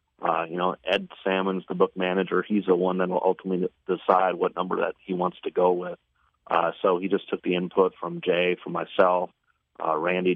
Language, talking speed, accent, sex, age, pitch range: English, 210 wpm, American, male, 30-49, 90-95 Hz